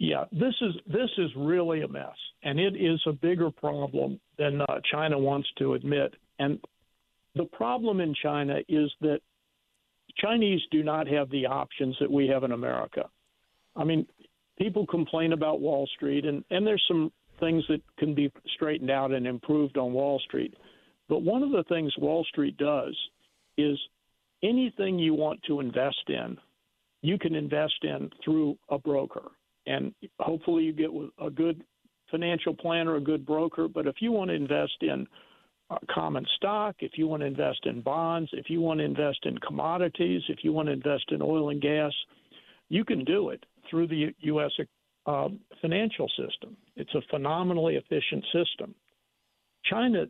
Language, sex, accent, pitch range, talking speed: English, male, American, 145-165 Hz, 170 wpm